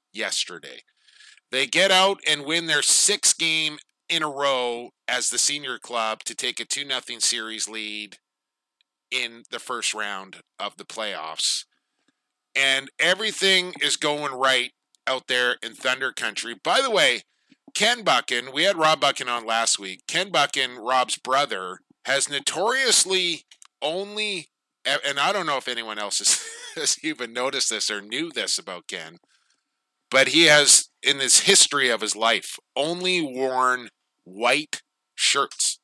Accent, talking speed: American, 150 wpm